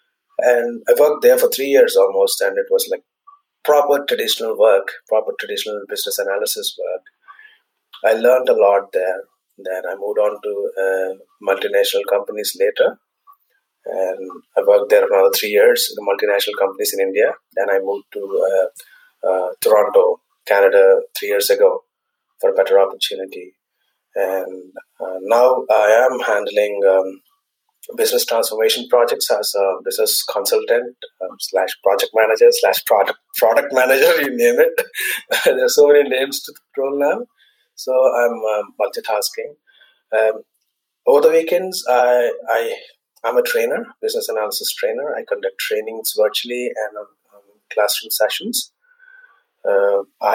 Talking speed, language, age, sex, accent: 140 wpm, English, 30-49, male, Indian